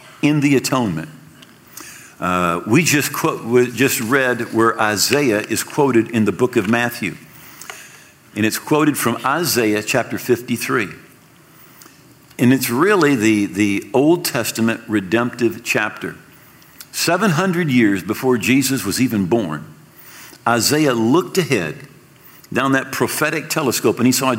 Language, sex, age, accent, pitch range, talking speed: English, male, 50-69, American, 120-155 Hz, 130 wpm